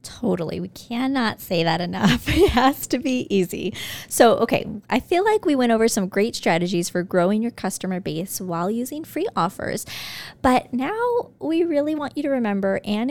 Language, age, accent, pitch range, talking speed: English, 20-39, American, 195-265 Hz, 185 wpm